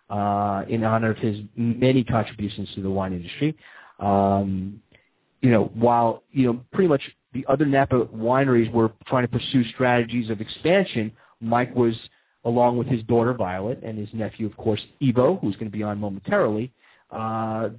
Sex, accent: male, American